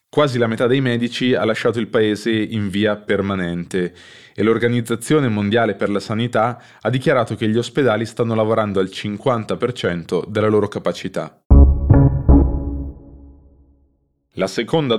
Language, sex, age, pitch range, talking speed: Italian, male, 20-39, 95-120 Hz, 130 wpm